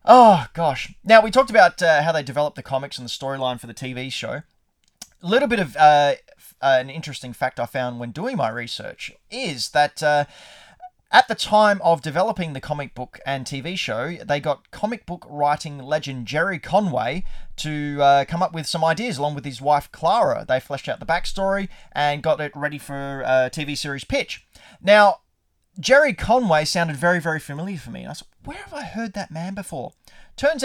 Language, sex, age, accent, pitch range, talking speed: English, male, 30-49, Australian, 135-190 Hz, 200 wpm